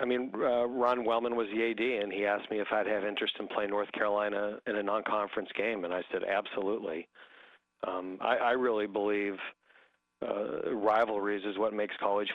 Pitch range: 95-110 Hz